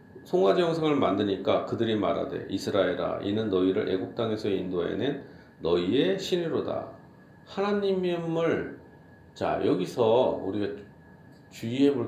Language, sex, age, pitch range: Korean, male, 40-59, 140-225 Hz